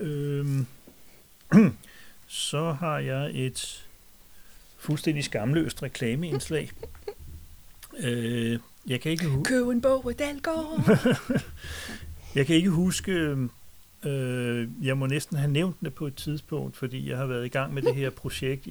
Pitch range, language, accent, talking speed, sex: 115-140 Hz, Danish, native, 105 wpm, male